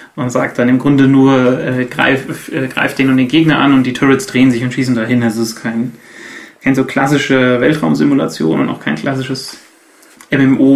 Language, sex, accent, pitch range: German, male, German, 135-180 Hz